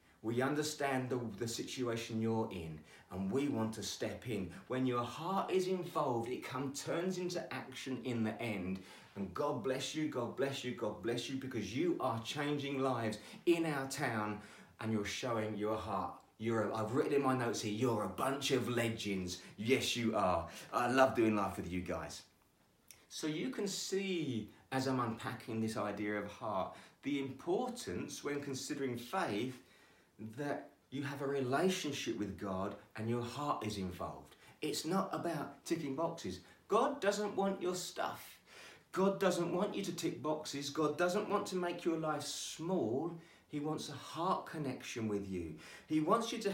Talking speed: 175 wpm